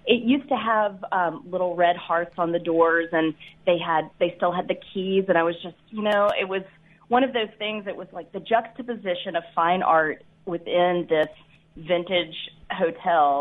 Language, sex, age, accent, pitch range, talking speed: English, female, 30-49, American, 165-200 Hz, 195 wpm